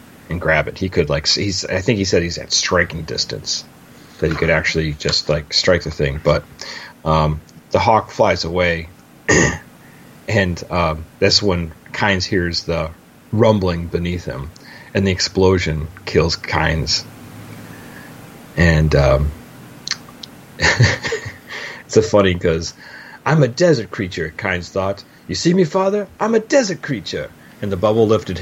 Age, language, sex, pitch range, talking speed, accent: 30-49, English, male, 85-105 Hz, 145 wpm, American